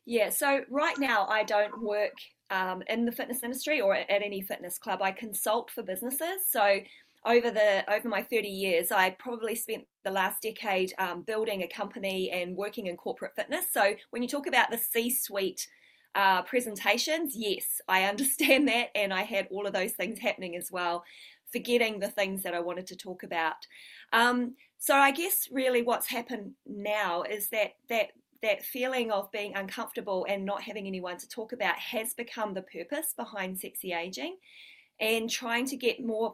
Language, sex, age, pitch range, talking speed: English, female, 20-39, 200-255 Hz, 180 wpm